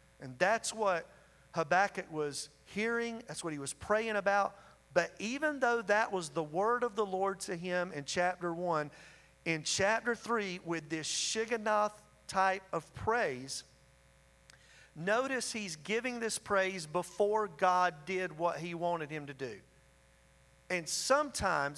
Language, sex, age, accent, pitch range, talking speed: English, male, 40-59, American, 155-200 Hz, 145 wpm